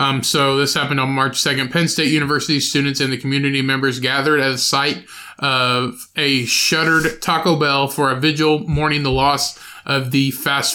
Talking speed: 185 wpm